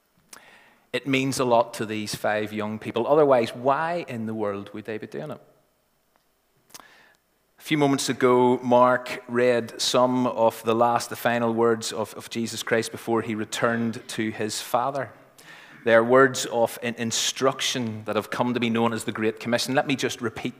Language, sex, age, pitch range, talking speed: English, male, 30-49, 110-130 Hz, 175 wpm